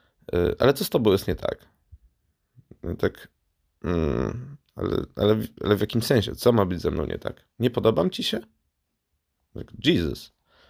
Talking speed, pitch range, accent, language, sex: 175 wpm, 95-120 Hz, native, Polish, male